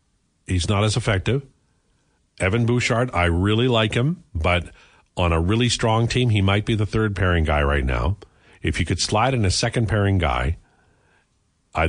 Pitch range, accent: 85-125 Hz, American